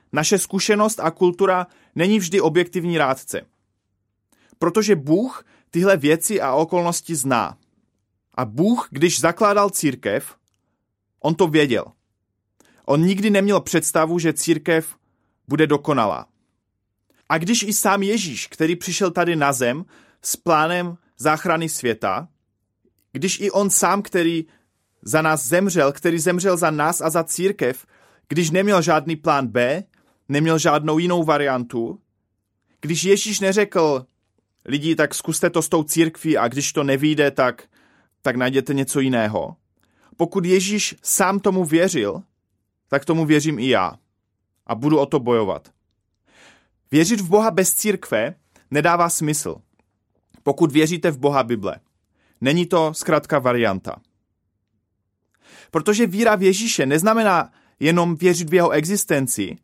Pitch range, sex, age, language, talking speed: 130-180 Hz, male, 30-49, Czech, 130 wpm